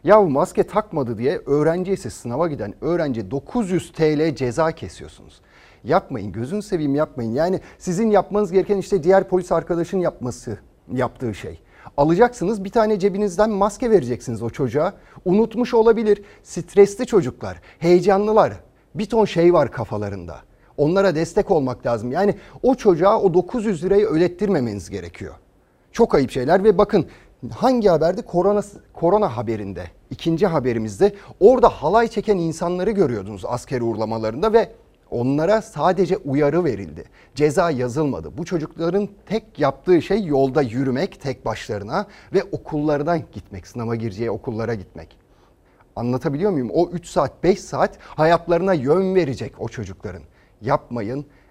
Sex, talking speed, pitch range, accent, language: male, 130 wpm, 120-195 Hz, native, Turkish